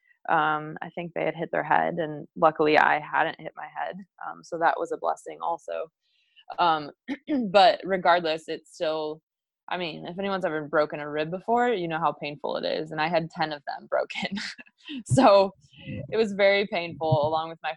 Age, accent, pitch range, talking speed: 20-39, American, 150-185 Hz, 195 wpm